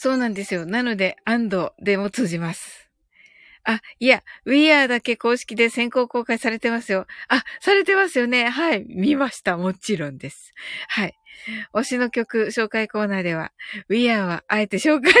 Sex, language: female, Japanese